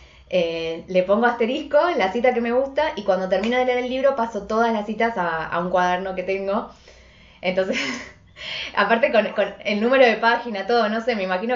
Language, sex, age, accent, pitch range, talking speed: Spanish, female, 20-39, Argentinian, 180-235 Hz, 210 wpm